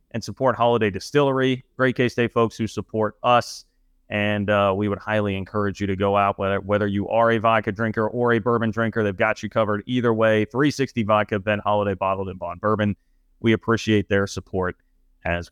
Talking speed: 195 wpm